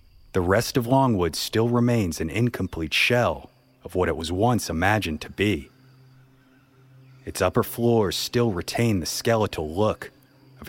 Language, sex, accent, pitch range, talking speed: English, male, American, 85-120 Hz, 145 wpm